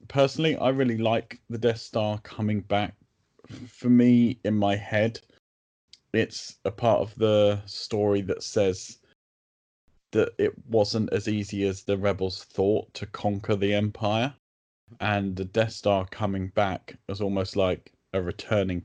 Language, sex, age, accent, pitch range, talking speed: English, male, 20-39, British, 90-110 Hz, 145 wpm